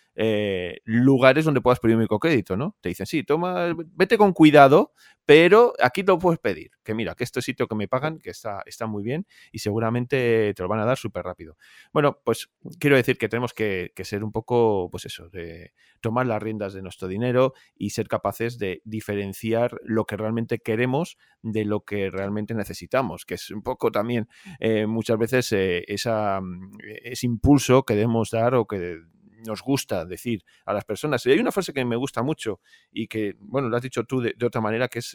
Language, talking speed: Spanish, 205 wpm